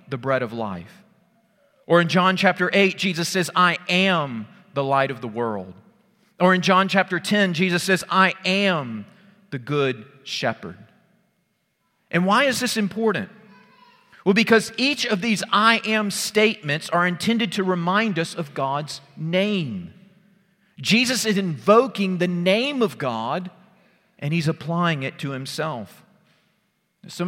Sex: male